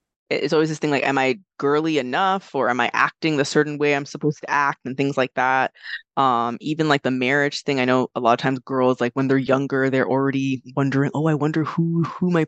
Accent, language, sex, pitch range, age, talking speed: American, English, female, 130-160 Hz, 20-39, 240 wpm